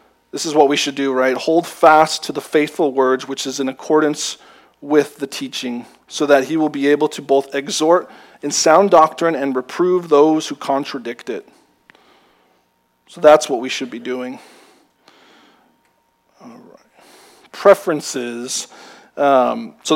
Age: 40-59